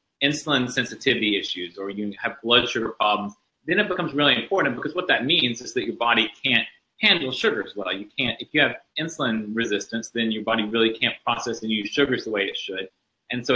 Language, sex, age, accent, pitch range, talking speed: English, male, 30-49, American, 110-135 Hz, 215 wpm